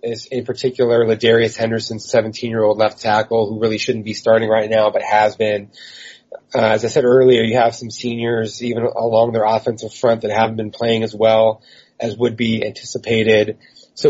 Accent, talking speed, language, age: American, 180 wpm, English, 30-49